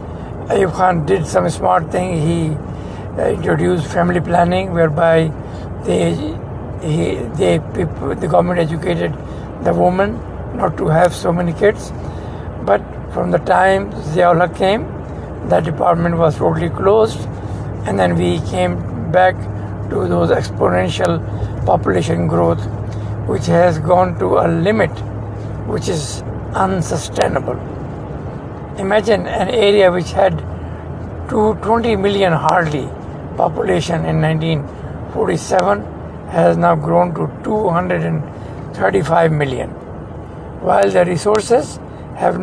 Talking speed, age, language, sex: 105 wpm, 60-79, English, male